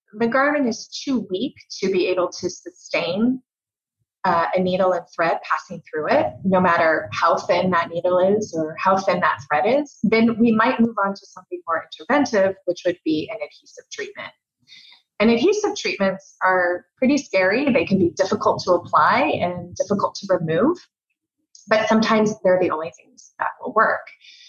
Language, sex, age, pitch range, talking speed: English, female, 30-49, 180-230 Hz, 175 wpm